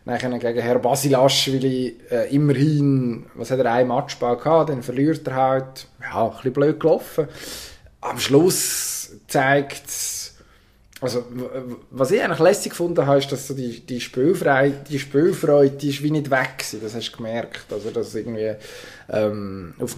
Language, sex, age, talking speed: German, male, 20-39, 170 wpm